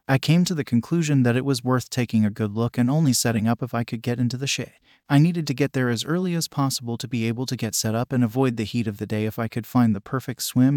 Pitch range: 115-140 Hz